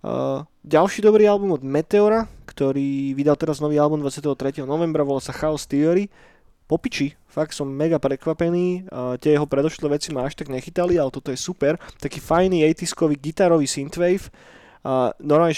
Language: Slovak